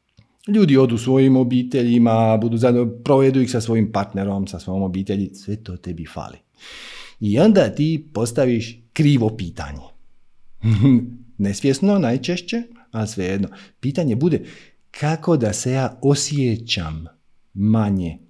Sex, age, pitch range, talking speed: male, 50-69, 95-135 Hz, 120 wpm